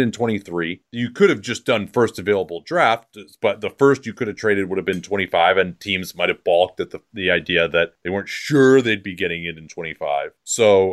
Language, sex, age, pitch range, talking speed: English, male, 30-49, 100-120 Hz, 225 wpm